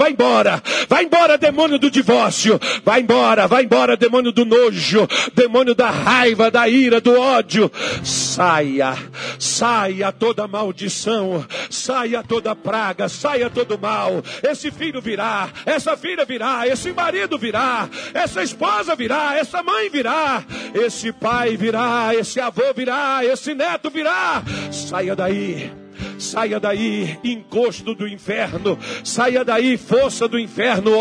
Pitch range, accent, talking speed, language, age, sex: 195-260 Hz, Brazilian, 130 wpm, Portuguese, 50-69, male